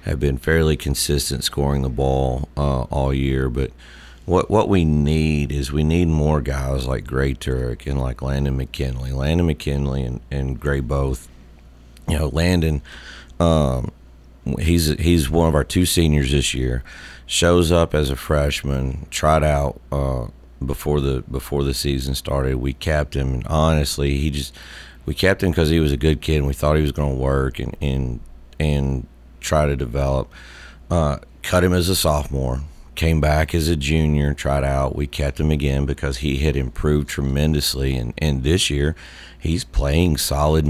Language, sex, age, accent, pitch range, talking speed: English, male, 40-59, American, 65-80 Hz, 175 wpm